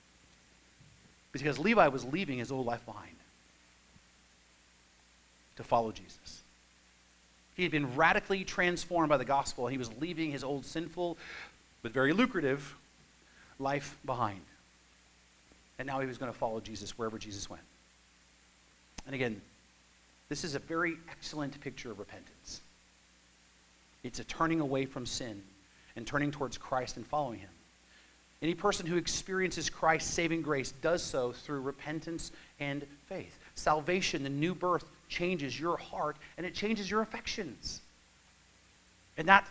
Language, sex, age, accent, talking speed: English, male, 40-59, American, 140 wpm